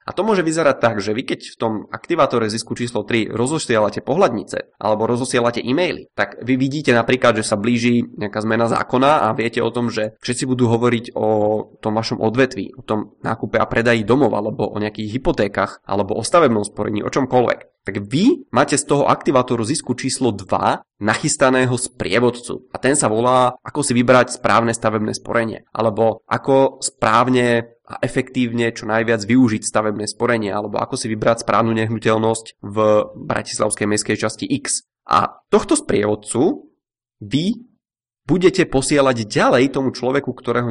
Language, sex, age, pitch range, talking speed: Czech, male, 20-39, 110-130 Hz, 160 wpm